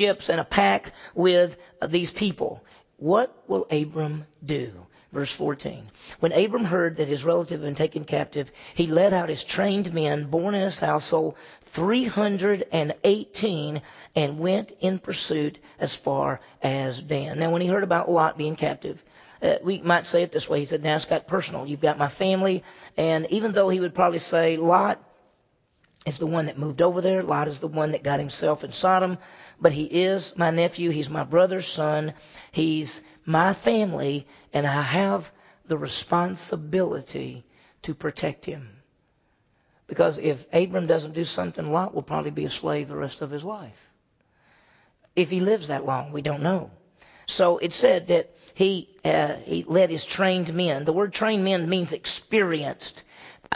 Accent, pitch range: American, 150-185 Hz